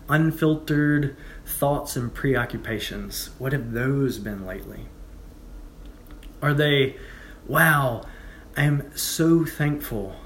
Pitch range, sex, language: 110-145 Hz, male, English